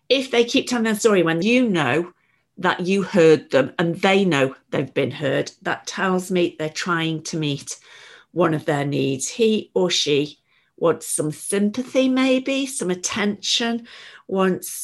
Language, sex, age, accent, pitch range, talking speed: English, female, 50-69, British, 155-205 Hz, 160 wpm